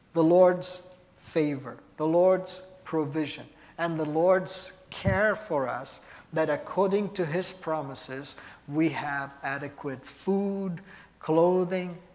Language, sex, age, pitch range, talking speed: English, male, 50-69, 135-175 Hz, 110 wpm